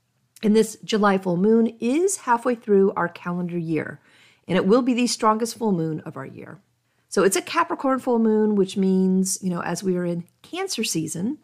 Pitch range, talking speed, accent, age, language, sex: 180-260 Hz, 200 wpm, American, 40-59, English, female